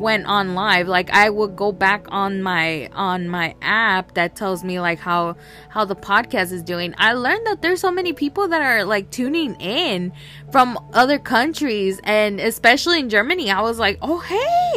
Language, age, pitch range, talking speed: English, 20-39, 185-230 Hz, 190 wpm